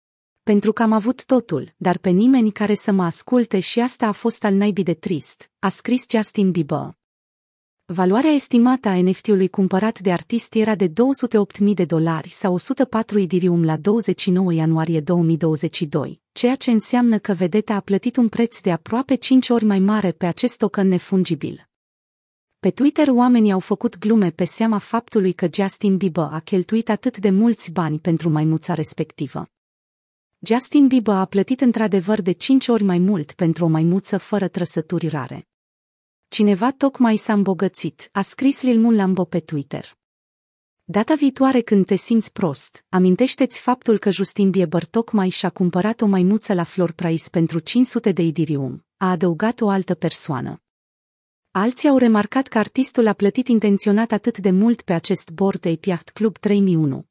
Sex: female